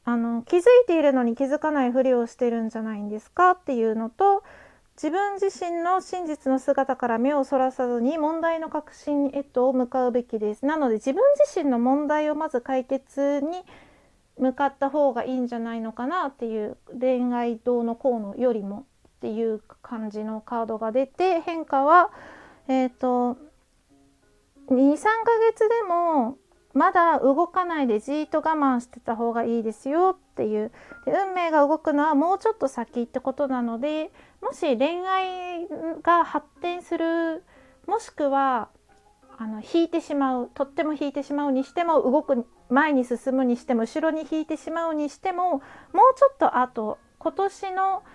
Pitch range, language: 250-330 Hz, Japanese